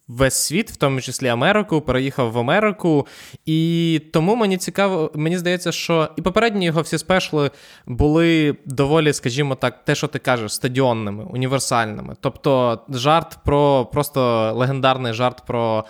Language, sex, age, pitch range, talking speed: Ukrainian, male, 20-39, 125-165 Hz, 145 wpm